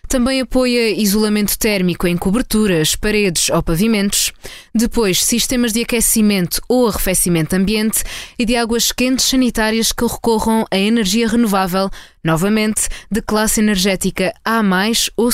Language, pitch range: Portuguese, 190-230 Hz